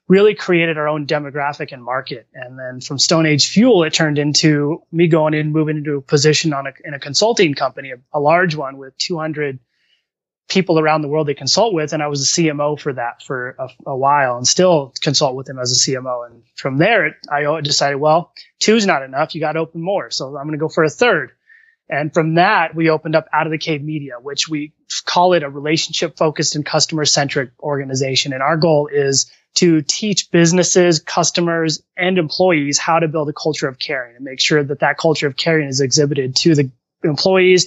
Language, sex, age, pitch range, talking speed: English, male, 20-39, 140-165 Hz, 215 wpm